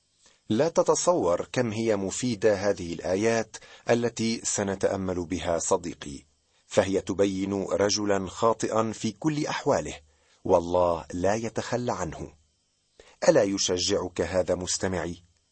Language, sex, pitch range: Arabic, male, 90-120 Hz